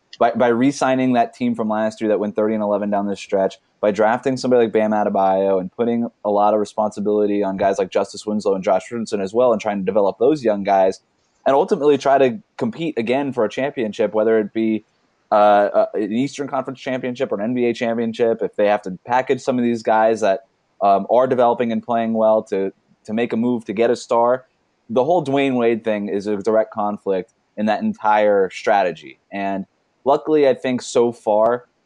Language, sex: English, male